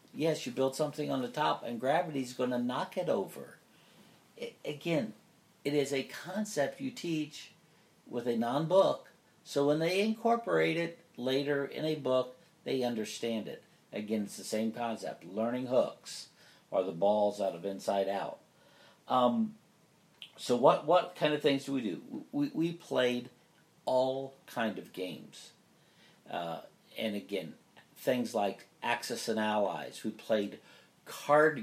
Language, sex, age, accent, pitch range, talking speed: English, male, 60-79, American, 105-150 Hz, 150 wpm